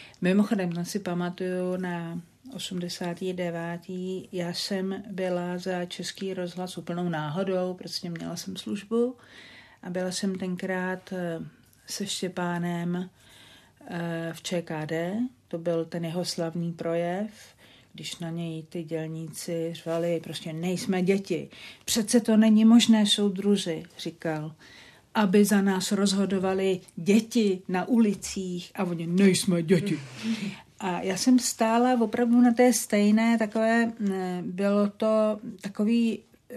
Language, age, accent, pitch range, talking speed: Czech, 50-69, native, 175-210 Hz, 115 wpm